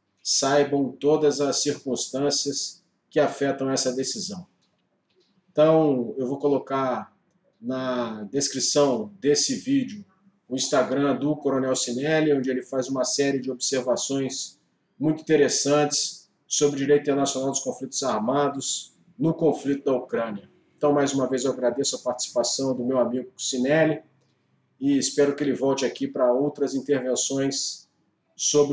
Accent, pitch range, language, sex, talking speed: Brazilian, 130-145 Hz, Portuguese, male, 130 wpm